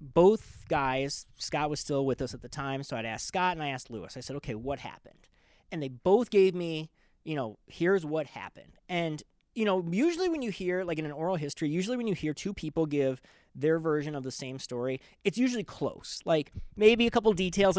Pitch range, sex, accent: 140-190 Hz, male, American